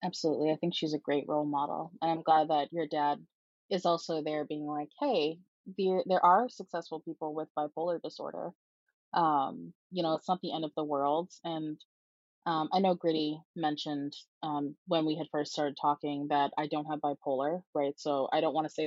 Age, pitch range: 20-39, 145-165 Hz